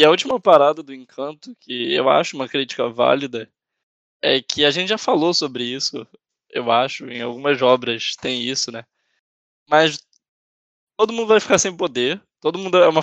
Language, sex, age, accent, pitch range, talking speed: Portuguese, male, 10-29, Brazilian, 135-195 Hz, 180 wpm